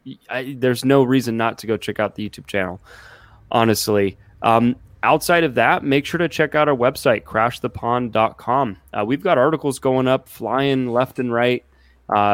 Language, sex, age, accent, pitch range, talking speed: English, male, 20-39, American, 110-130 Hz, 175 wpm